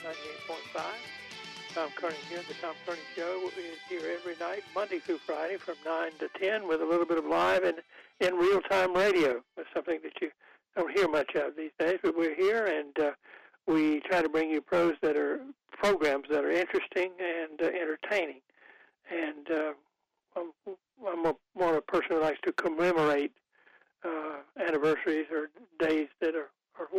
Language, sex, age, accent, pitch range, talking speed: English, male, 60-79, American, 150-180 Hz, 170 wpm